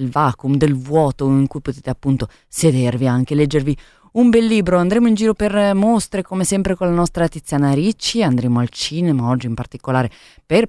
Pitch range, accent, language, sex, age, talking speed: 135-180 Hz, native, Italian, female, 20-39, 180 wpm